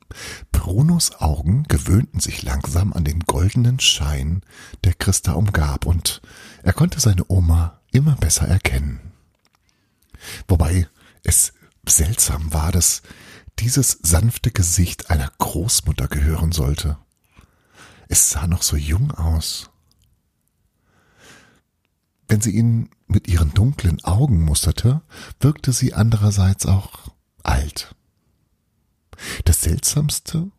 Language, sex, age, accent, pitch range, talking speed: German, male, 50-69, German, 80-110 Hz, 105 wpm